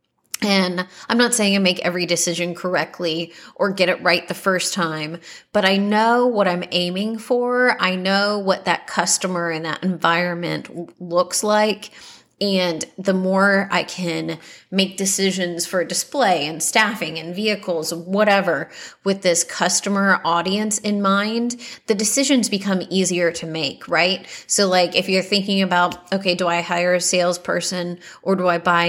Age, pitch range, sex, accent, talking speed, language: 30-49, 175-210 Hz, female, American, 160 wpm, English